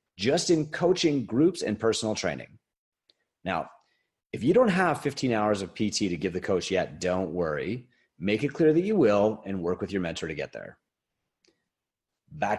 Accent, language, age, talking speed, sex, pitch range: American, English, 30-49, 180 wpm, male, 95-145 Hz